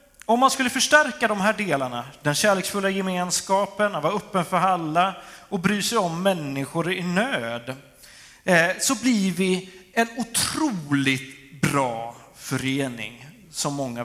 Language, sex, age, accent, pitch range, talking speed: Swedish, male, 30-49, native, 135-225 Hz, 130 wpm